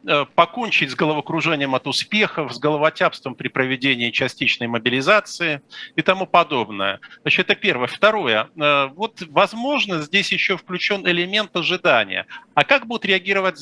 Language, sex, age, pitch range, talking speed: Russian, male, 50-69, 155-205 Hz, 130 wpm